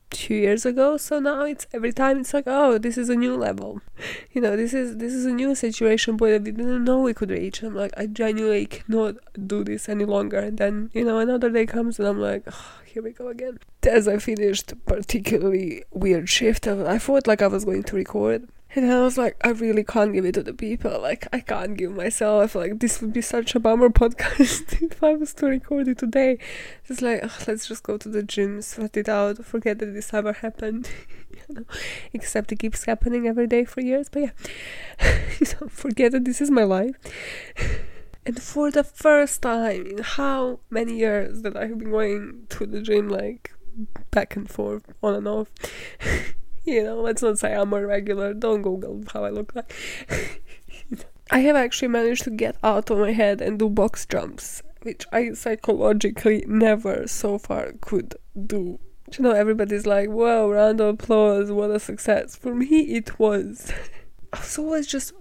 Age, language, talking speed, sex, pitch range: 20-39, English, 200 wpm, female, 210-250 Hz